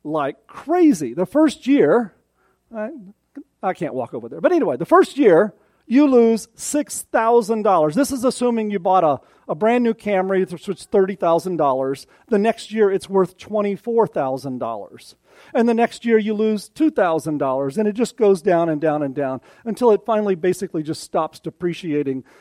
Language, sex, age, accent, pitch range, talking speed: English, male, 40-59, American, 165-235 Hz, 165 wpm